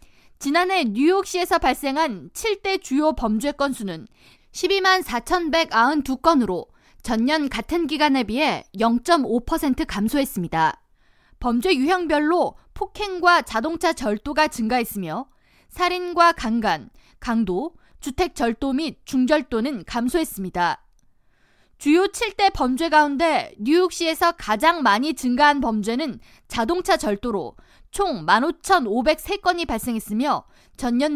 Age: 20-39